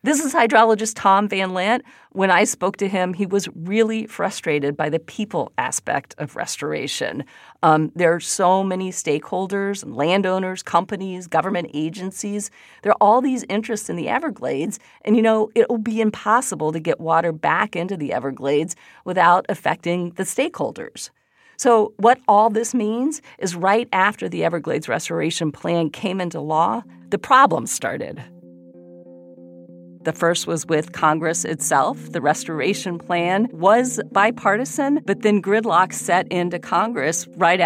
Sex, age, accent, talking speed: female, 40-59, American, 150 wpm